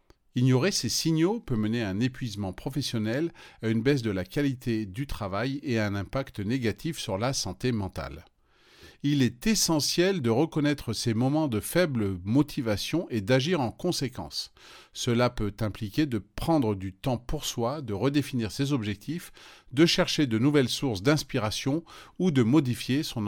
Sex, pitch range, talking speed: male, 110-150 Hz, 160 wpm